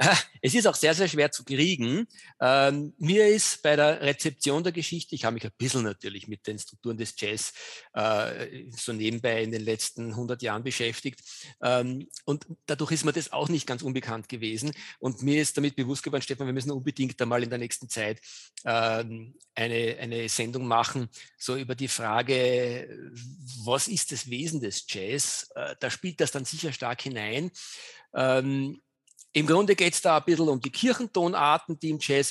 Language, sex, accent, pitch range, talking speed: German, male, German, 120-150 Hz, 185 wpm